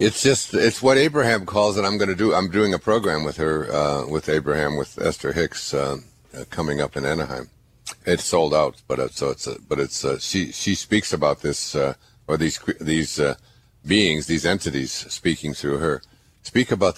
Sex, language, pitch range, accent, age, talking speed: male, English, 80-105 Hz, American, 60-79, 200 wpm